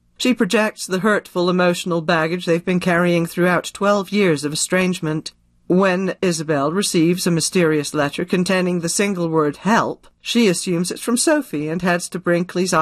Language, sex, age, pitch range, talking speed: English, female, 50-69, 155-195 Hz, 160 wpm